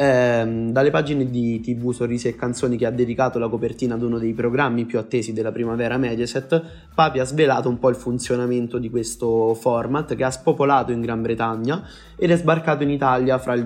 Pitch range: 115-140 Hz